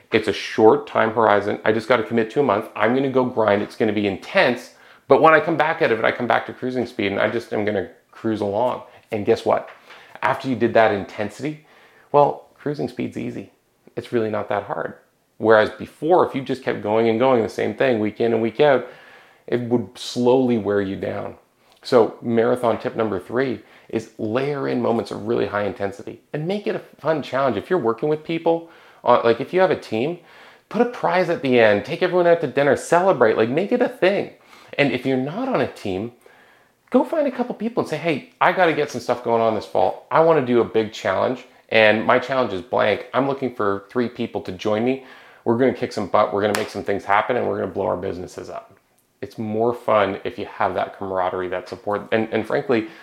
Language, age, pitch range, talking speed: English, 30-49, 105-135 Hz, 240 wpm